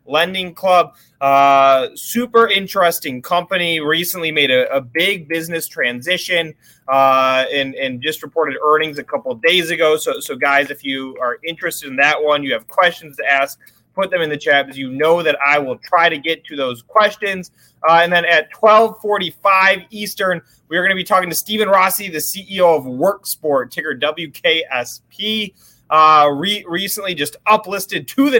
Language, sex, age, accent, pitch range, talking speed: English, male, 20-39, American, 135-185 Hz, 175 wpm